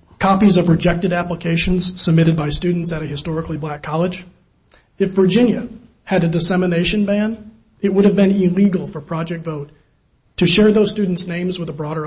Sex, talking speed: male, 170 wpm